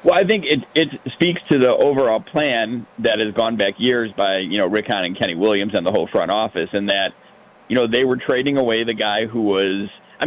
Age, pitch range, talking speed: 40-59, 105-125 Hz, 240 wpm